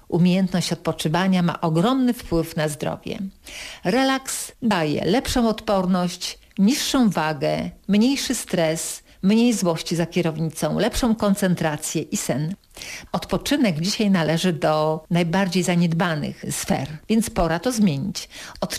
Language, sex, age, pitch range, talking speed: Polish, female, 50-69, 165-210 Hz, 110 wpm